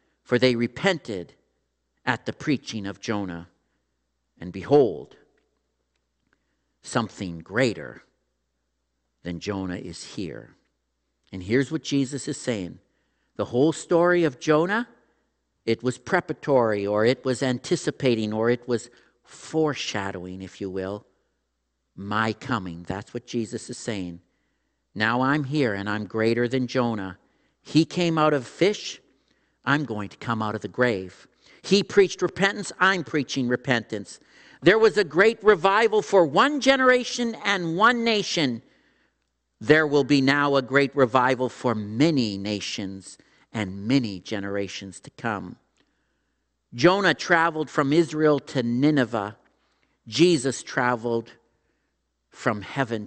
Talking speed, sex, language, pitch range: 125 wpm, male, English, 100-155 Hz